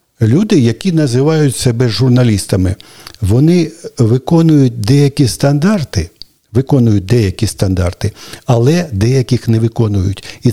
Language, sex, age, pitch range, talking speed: Ukrainian, male, 60-79, 110-140 Hz, 95 wpm